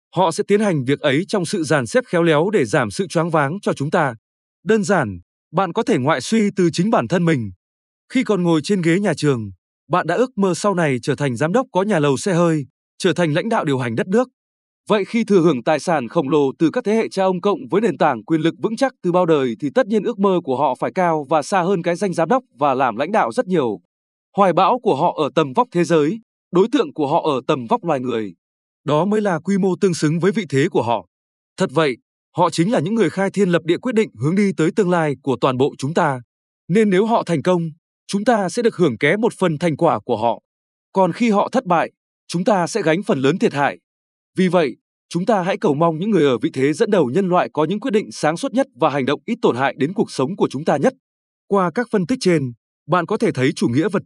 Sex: male